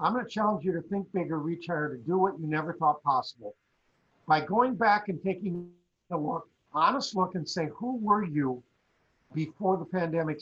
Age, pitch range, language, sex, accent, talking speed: 50-69, 150-195 Hz, English, male, American, 190 wpm